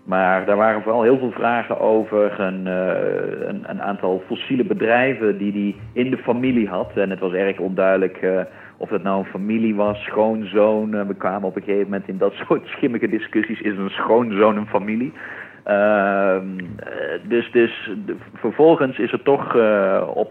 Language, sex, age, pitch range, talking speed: Dutch, male, 50-69, 95-115 Hz, 170 wpm